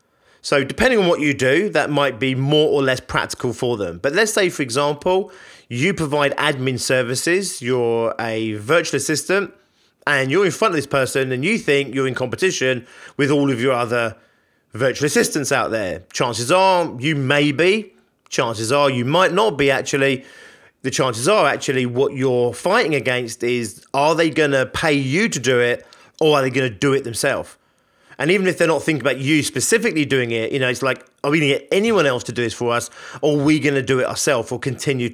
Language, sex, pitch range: English, male, 130-155 Hz